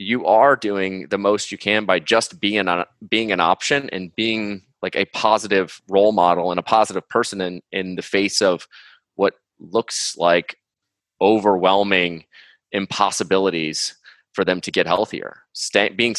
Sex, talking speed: male, 150 wpm